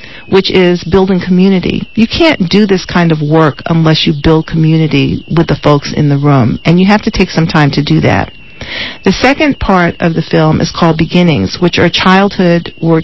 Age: 40-59